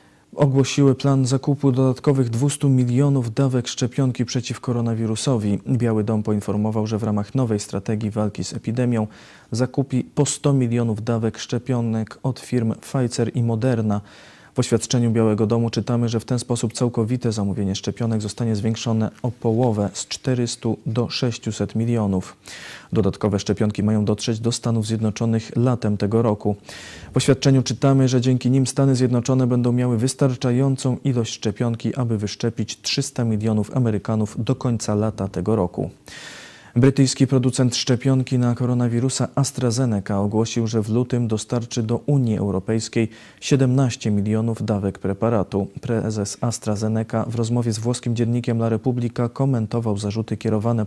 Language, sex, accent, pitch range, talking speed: Polish, male, native, 110-125 Hz, 135 wpm